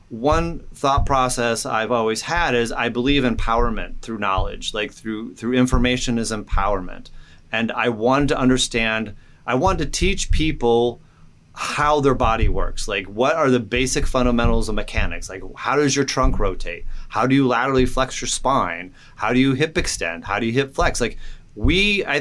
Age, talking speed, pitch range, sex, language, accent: 30-49, 180 wpm, 115-140 Hz, male, English, American